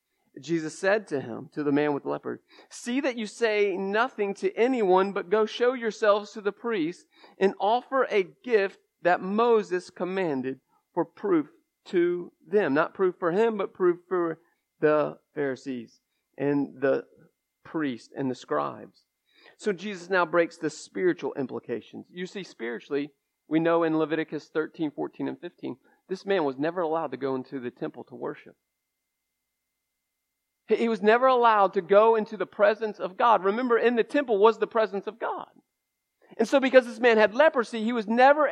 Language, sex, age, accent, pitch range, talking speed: English, male, 40-59, American, 175-240 Hz, 170 wpm